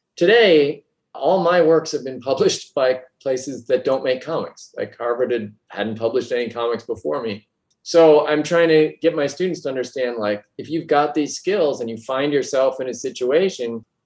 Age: 30-49